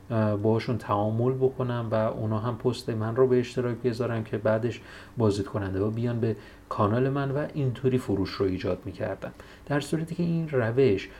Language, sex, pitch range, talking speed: Persian, male, 100-135 Hz, 170 wpm